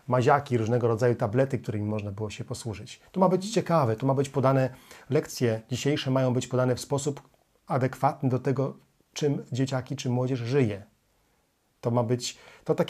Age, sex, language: 40-59, male, Polish